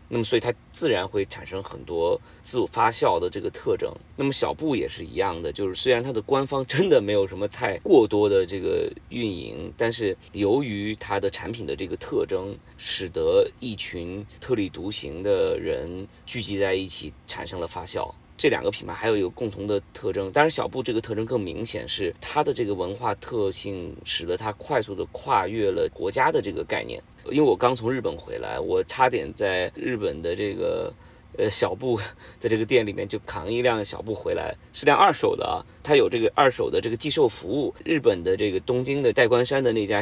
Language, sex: Chinese, male